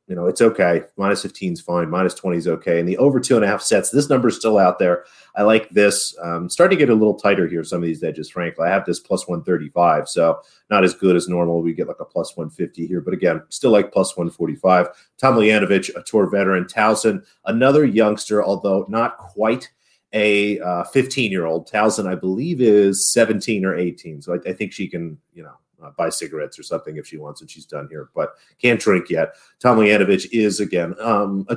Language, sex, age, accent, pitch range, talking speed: English, male, 40-59, American, 90-105 Hz, 220 wpm